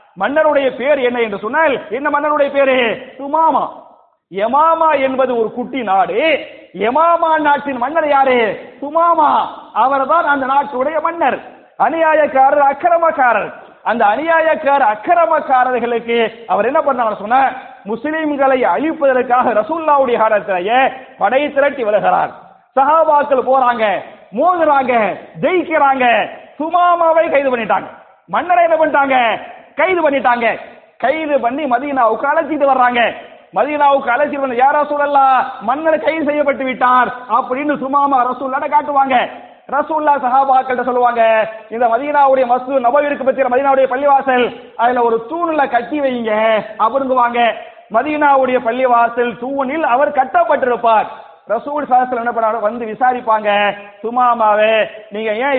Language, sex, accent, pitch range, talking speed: English, male, Indian, 240-295 Hz, 105 wpm